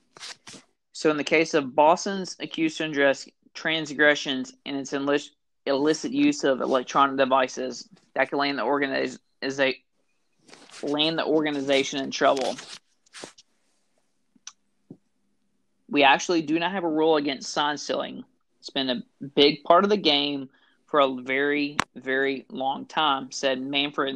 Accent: American